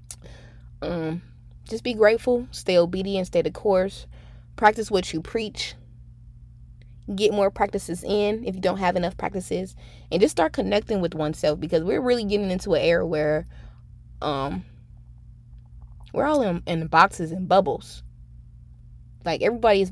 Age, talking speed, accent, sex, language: 20-39, 145 wpm, American, female, English